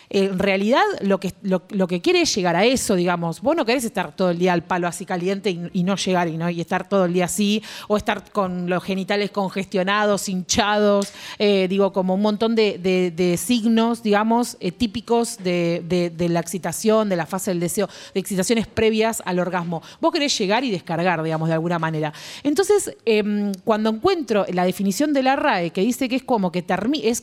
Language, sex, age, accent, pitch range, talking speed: Spanish, female, 30-49, Argentinian, 185-225 Hz, 210 wpm